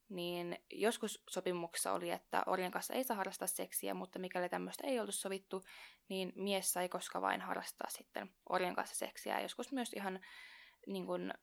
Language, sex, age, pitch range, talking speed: Finnish, female, 20-39, 175-195 Hz, 170 wpm